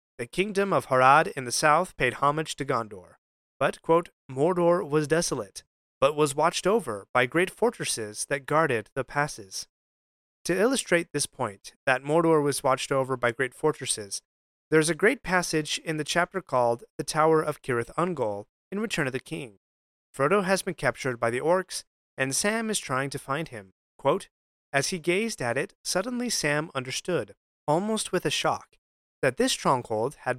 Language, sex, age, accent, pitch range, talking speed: English, male, 30-49, American, 130-175 Hz, 175 wpm